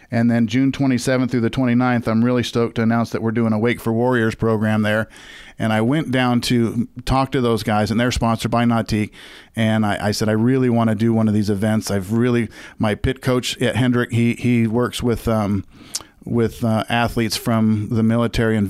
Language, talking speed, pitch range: English, 215 wpm, 110-120 Hz